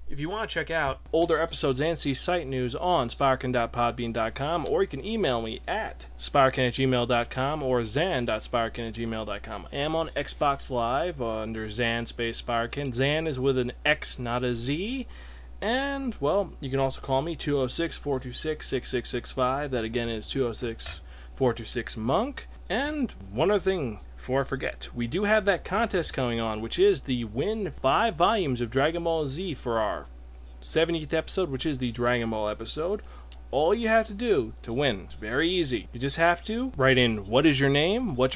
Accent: American